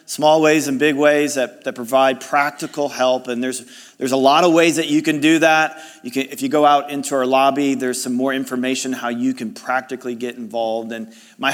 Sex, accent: male, American